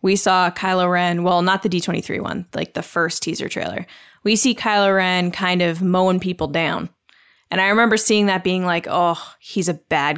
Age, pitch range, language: 20-39, 175-200 Hz, English